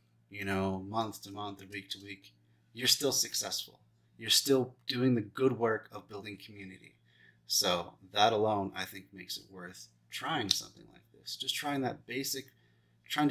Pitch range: 95-115 Hz